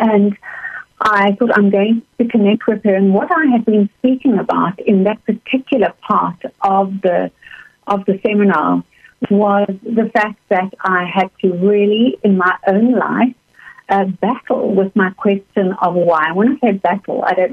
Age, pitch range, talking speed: 60-79, 195-235 Hz, 170 wpm